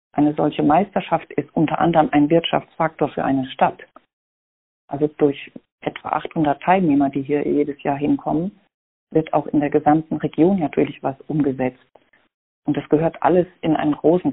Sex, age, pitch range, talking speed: female, 40-59, 145-165 Hz, 155 wpm